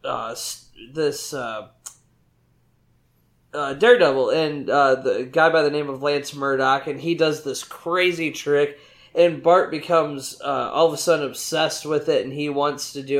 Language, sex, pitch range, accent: English, male, 145-170 Hz, American